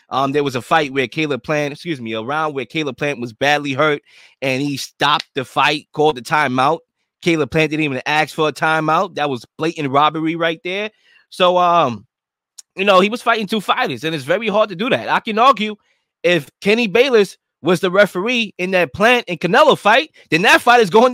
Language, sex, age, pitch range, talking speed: English, male, 20-39, 155-205 Hz, 215 wpm